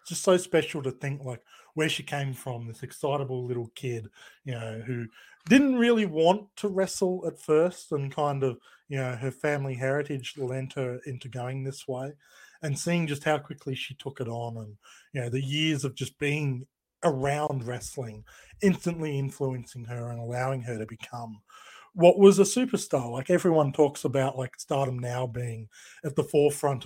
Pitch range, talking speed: 125-150 Hz, 180 wpm